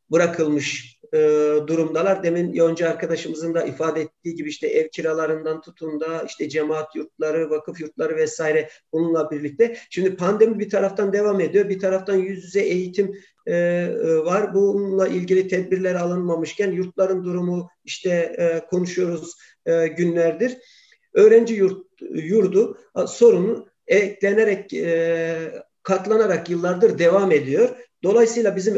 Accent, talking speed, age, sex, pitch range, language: native, 125 wpm, 50-69, male, 165-210 Hz, Turkish